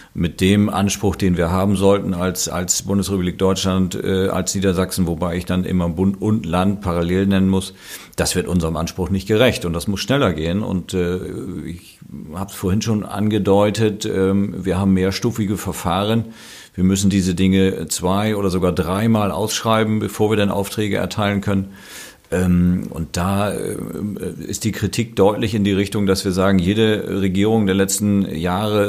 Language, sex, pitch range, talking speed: German, male, 95-105 Hz, 165 wpm